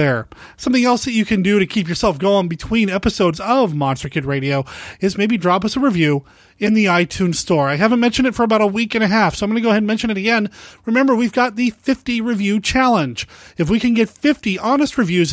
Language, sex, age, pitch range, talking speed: English, male, 30-49, 165-225 Hz, 245 wpm